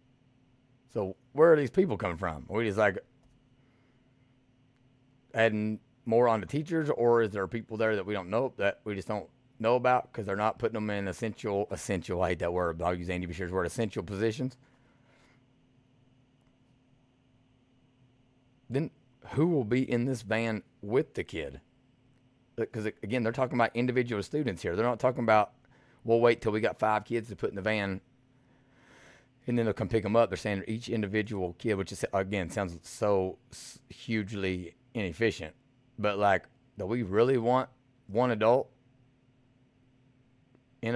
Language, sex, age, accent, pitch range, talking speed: English, male, 30-49, American, 110-130 Hz, 165 wpm